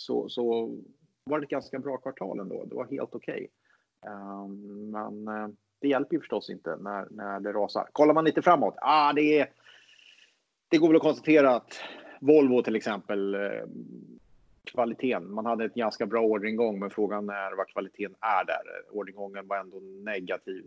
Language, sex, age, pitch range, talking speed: Swedish, male, 30-49, 100-135 Hz, 165 wpm